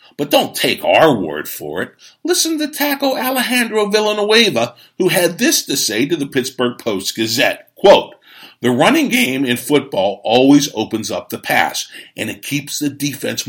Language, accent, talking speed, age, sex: English, American, 165 wpm, 50-69, male